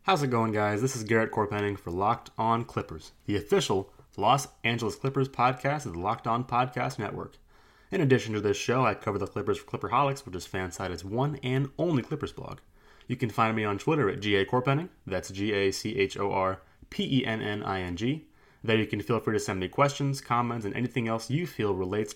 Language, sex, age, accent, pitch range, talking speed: English, male, 20-39, American, 100-130 Hz, 185 wpm